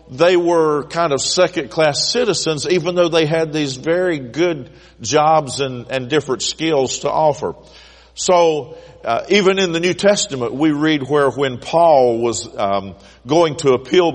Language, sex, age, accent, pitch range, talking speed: English, male, 50-69, American, 130-170 Hz, 155 wpm